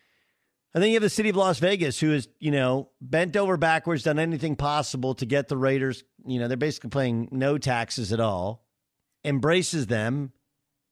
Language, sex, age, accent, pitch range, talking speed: English, male, 50-69, American, 120-160 Hz, 185 wpm